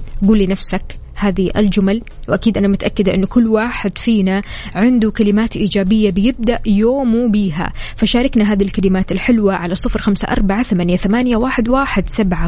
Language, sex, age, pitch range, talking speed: Arabic, female, 20-39, 195-230 Hz, 135 wpm